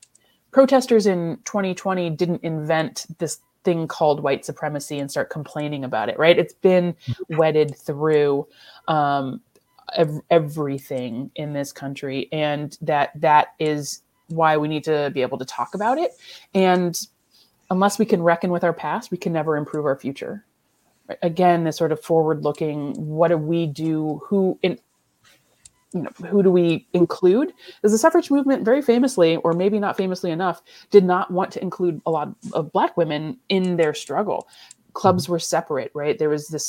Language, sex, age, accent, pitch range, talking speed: English, female, 30-49, American, 150-180 Hz, 165 wpm